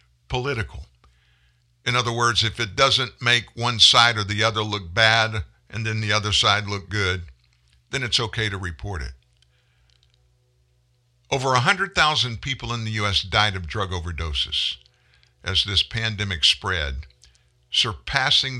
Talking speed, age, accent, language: 140 wpm, 60-79, American, English